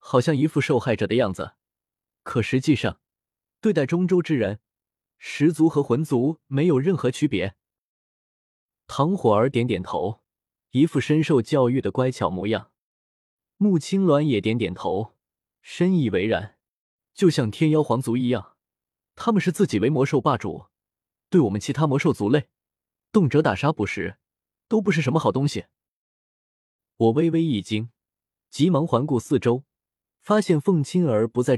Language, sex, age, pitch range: Chinese, male, 20-39, 110-160 Hz